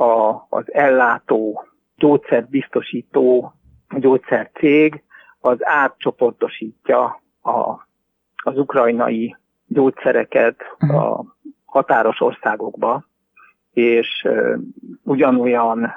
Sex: male